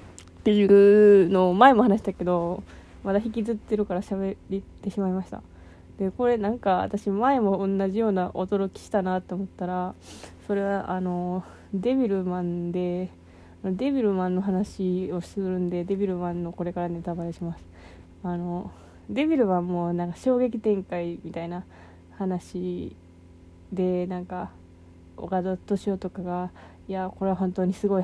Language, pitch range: Japanese, 170-195 Hz